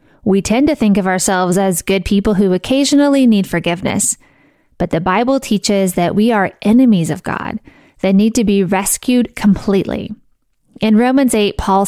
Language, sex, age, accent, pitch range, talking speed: English, female, 30-49, American, 190-240 Hz, 165 wpm